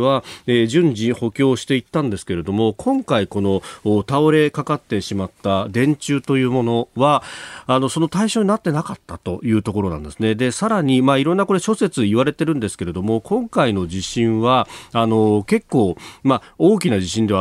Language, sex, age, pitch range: Japanese, male, 40-59, 100-150 Hz